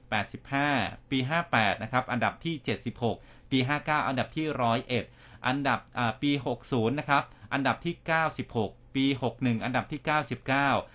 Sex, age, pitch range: male, 30-49, 115-135 Hz